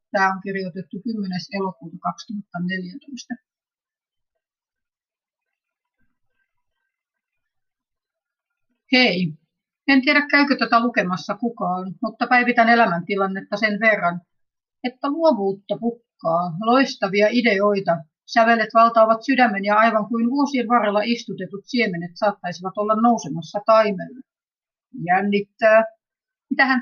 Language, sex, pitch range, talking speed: Finnish, female, 185-235 Hz, 85 wpm